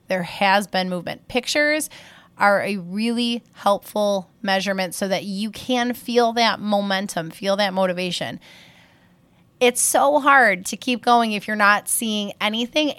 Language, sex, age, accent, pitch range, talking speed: English, female, 20-39, American, 185-240 Hz, 145 wpm